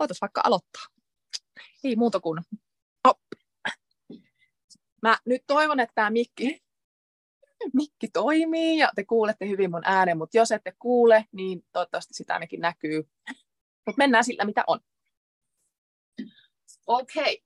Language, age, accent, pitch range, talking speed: Finnish, 20-39, native, 180-260 Hz, 125 wpm